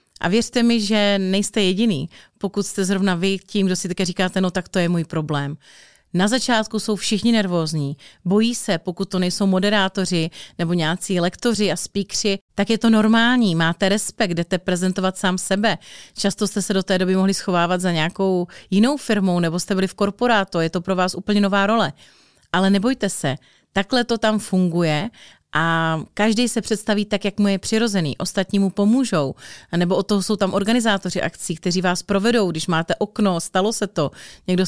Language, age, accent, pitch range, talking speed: Czech, 30-49, native, 180-215 Hz, 185 wpm